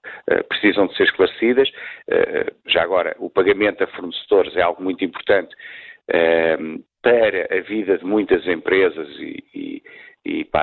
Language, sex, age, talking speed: Portuguese, male, 50-69, 130 wpm